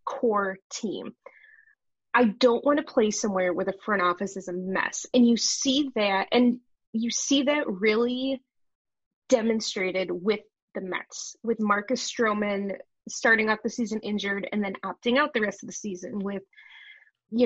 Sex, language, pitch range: female, English, 205-255 Hz